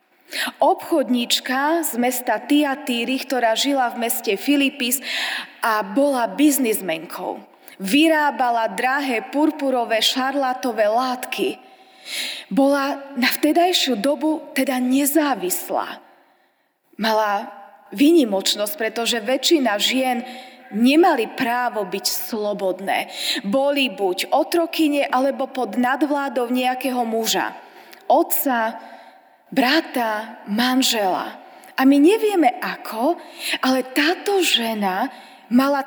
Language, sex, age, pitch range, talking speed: Slovak, female, 20-39, 240-300 Hz, 85 wpm